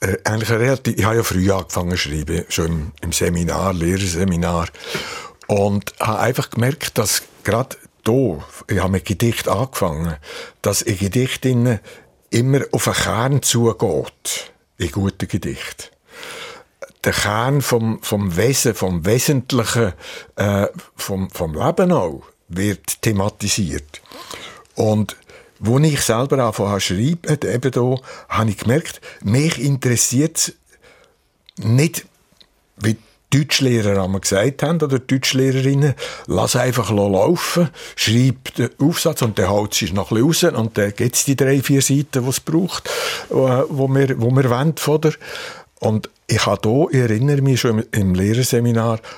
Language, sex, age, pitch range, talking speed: German, male, 60-79, 100-130 Hz, 140 wpm